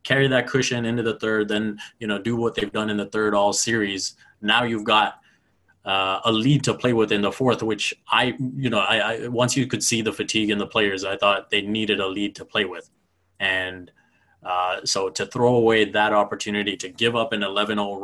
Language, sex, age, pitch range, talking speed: English, male, 20-39, 100-115 Hz, 225 wpm